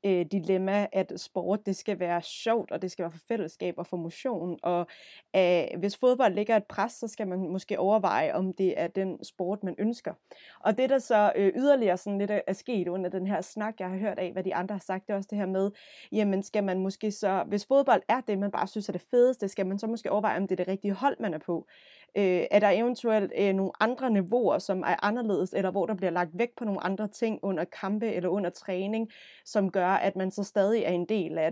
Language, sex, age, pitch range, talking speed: Danish, female, 20-39, 185-215 Hz, 245 wpm